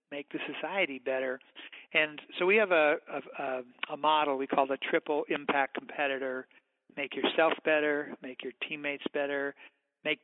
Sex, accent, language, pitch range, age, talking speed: male, American, English, 135-155 Hz, 60-79, 150 wpm